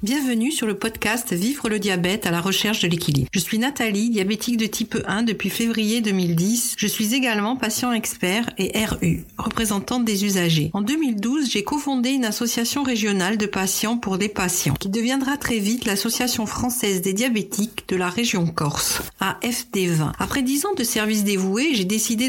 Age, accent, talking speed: 50-69, French, 180 wpm